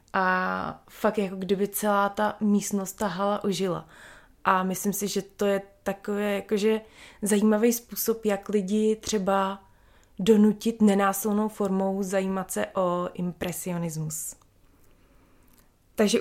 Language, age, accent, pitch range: Czech, 20-39, native, 180-210 Hz